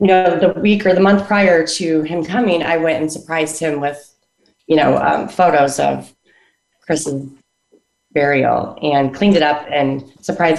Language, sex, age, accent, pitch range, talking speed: English, female, 30-49, American, 155-195 Hz, 170 wpm